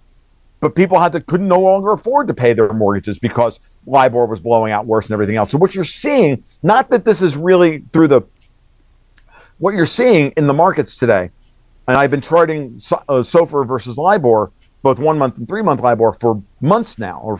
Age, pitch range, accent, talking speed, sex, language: 50-69, 105-155 Hz, American, 195 wpm, male, English